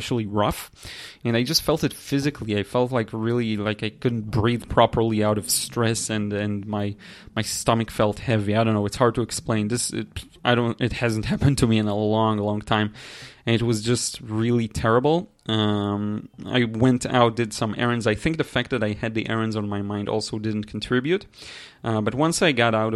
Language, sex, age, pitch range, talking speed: English, male, 30-49, 105-125 Hz, 210 wpm